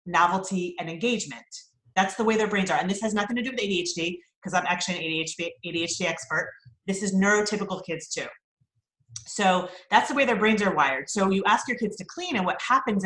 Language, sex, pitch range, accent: English, female, 175-230 Hz, American